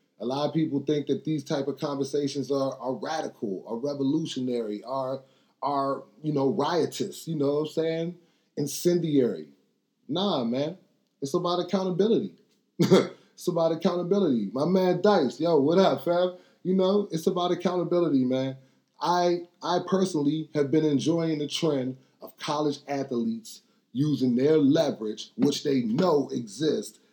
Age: 30-49